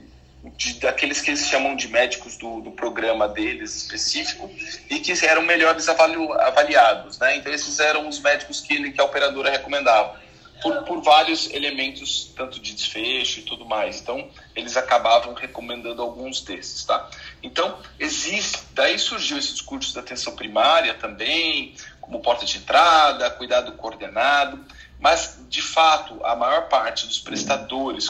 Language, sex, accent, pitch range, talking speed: Portuguese, male, Brazilian, 120-165 Hz, 150 wpm